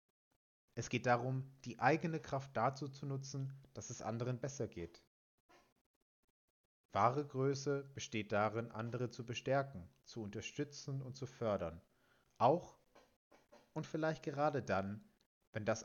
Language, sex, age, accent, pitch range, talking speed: German, male, 30-49, German, 105-130 Hz, 125 wpm